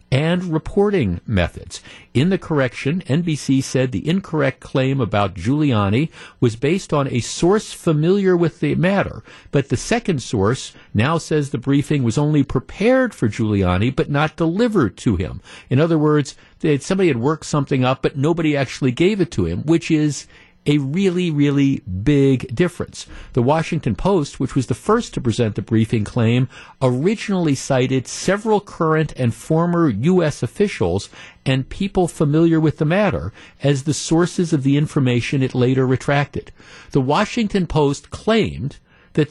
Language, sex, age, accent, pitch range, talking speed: English, male, 50-69, American, 130-170 Hz, 155 wpm